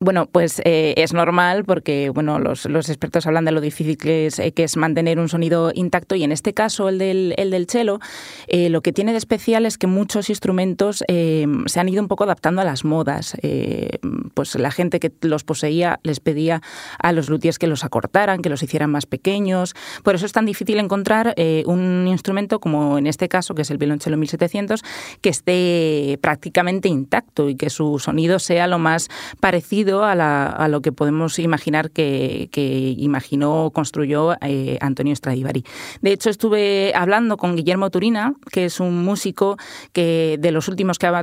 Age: 20-39